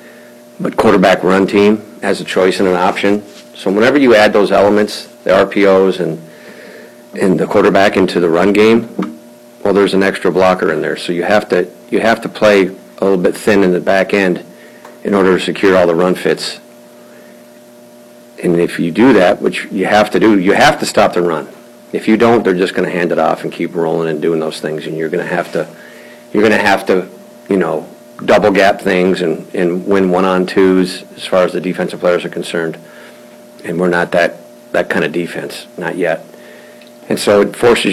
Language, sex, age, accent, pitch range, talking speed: English, male, 50-69, American, 90-105 Hz, 200 wpm